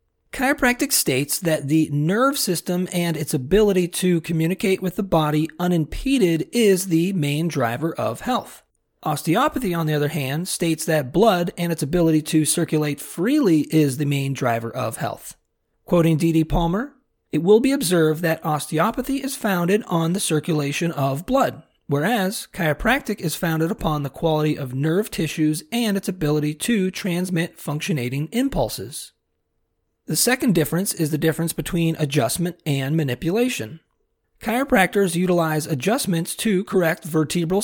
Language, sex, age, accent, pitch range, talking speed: English, male, 40-59, American, 155-200 Hz, 145 wpm